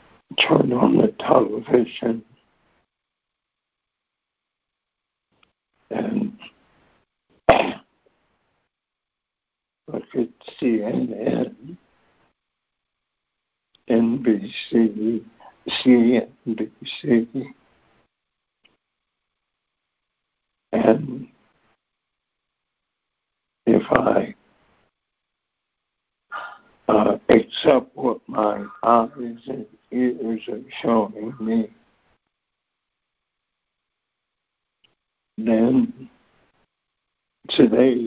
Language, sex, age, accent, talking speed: English, male, 60-79, American, 40 wpm